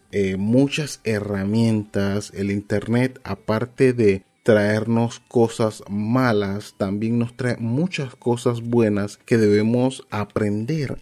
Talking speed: 105 wpm